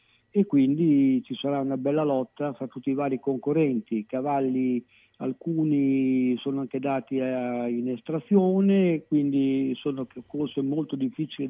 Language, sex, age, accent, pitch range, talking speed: Italian, male, 50-69, native, 135-170 Hz, 130 wpm